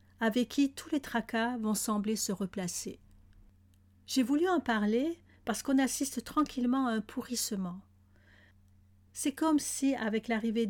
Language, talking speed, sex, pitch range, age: French, 140 wpm, female, 190-245 Hz, 50-69